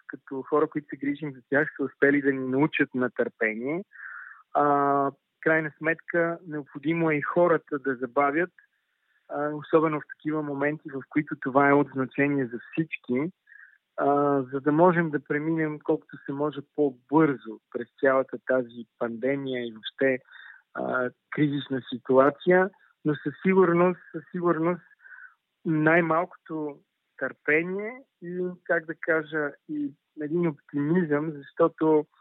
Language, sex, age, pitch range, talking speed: Bulgarian, male, 40-59, 130-160 Hz, 130 wpm